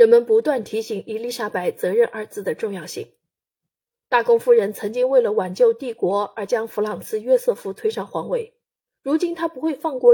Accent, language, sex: native, Chinese, female